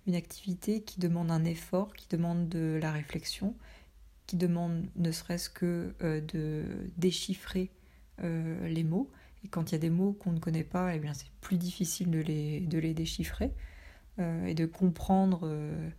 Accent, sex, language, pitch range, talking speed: French, female, French, 165-190 Hz, 170 wpm